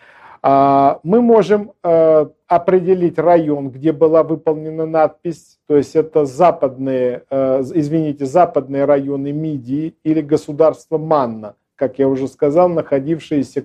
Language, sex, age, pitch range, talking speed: Russian, male, 50-69, 140-170 Hz, 105 wpm